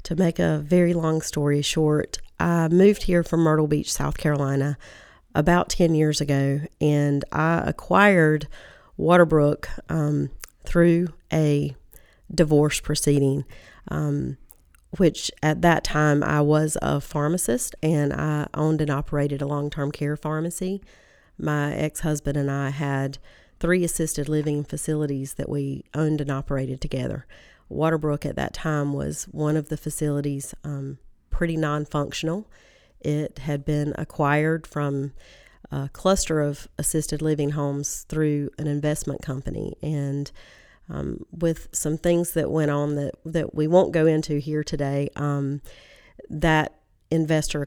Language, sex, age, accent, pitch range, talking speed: English, female, 40-59, American, 140-160 Hz, 135 wpm